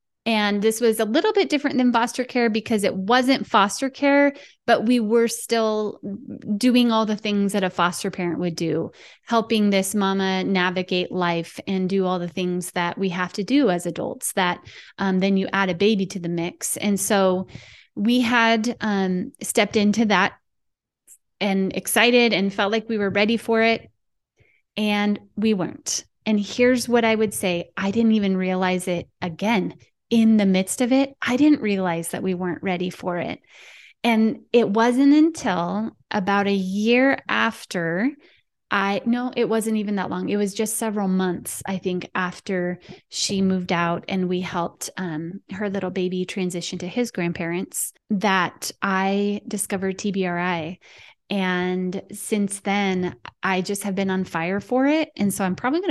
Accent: American